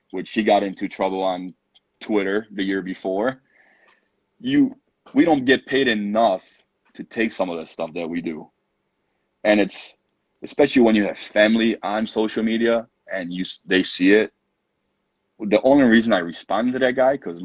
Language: English